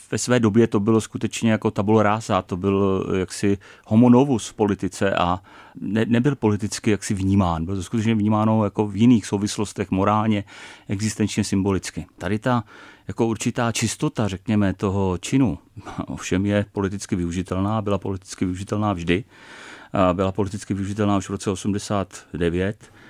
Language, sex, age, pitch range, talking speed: Czech, male, 40-59, 100-115 Hz, 145 wpm